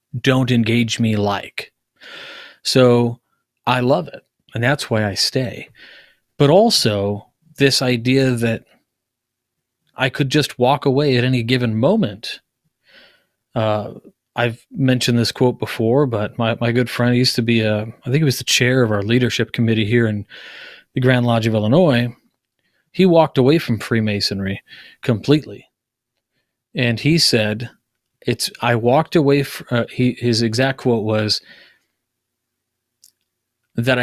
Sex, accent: male, American